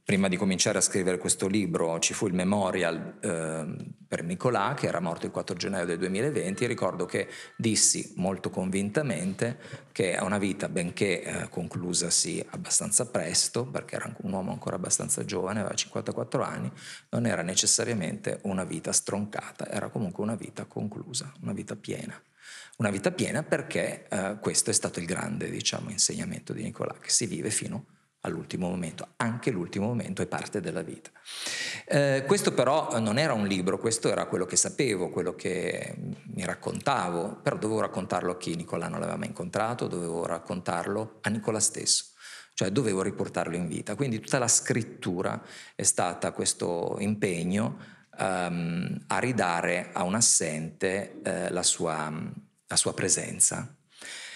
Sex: male